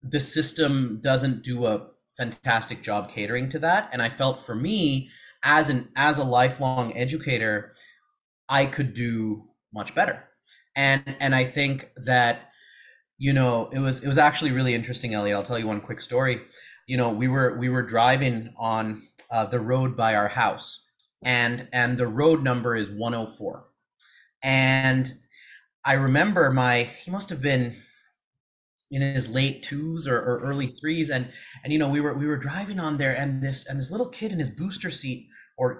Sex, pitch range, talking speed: male, 125-150 Hz, 185 wpm